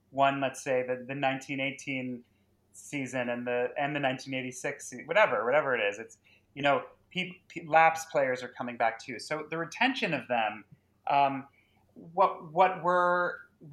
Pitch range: 115-145 Hz